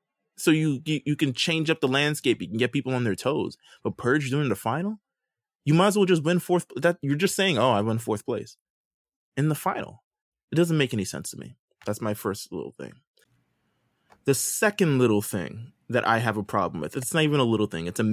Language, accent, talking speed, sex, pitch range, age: English, American, 230 wpm, male, 110-145 Hz, 20-39